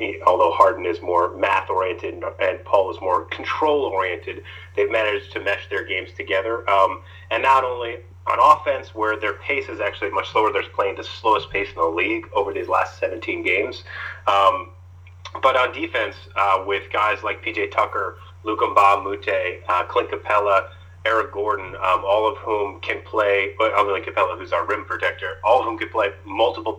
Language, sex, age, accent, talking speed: English, male, 30-49, American, 180 wpm